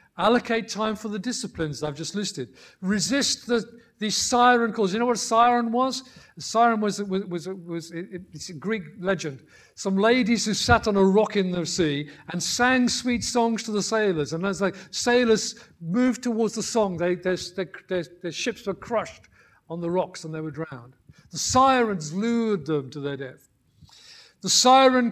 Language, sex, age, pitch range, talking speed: English, male, 50-69, 165-235 Hz, 190 wpm